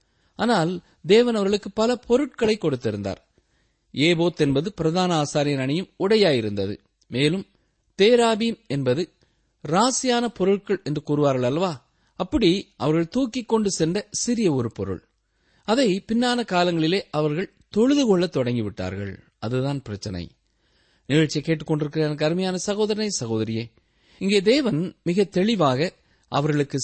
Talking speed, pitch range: 105 wpm, 125-205 Hz